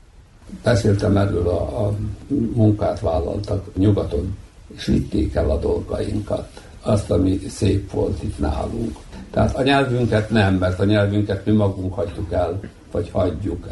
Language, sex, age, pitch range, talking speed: Hungarian, male, 60-79, 90-105 Hz, 135 wpm